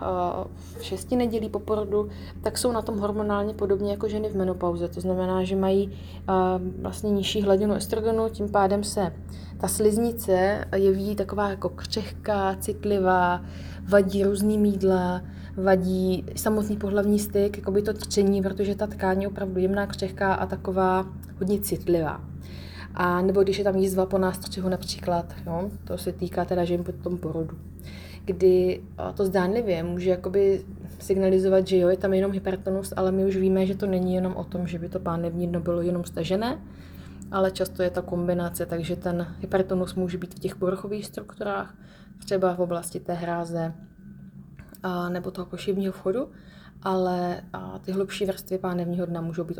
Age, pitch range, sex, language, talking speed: 20-39, 175-200 Hz, female, Slovak, 160 wpm